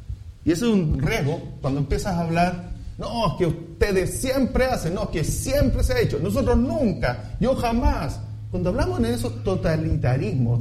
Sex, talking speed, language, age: male, 175 wpm, English, 40-59